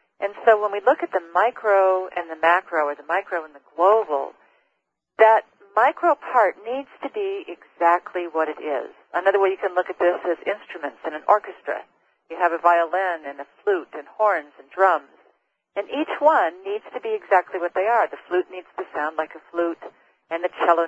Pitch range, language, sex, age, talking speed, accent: 170-230 Hz, English, female, 50-69, 205 wpm, American